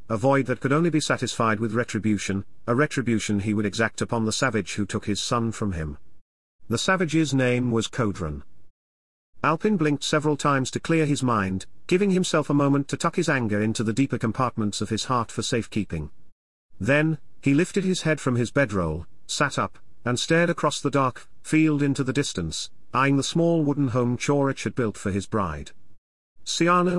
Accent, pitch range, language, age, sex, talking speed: British, 105-140 Hz, English, 40-59, male, 185 wpm